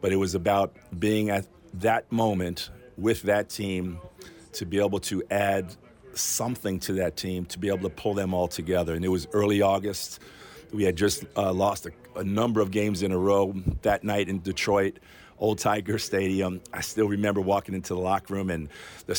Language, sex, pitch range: English, male, 90-105 Hz